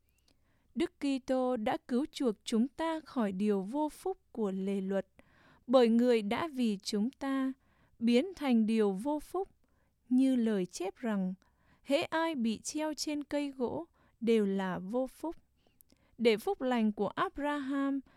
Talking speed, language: 150 wpm, English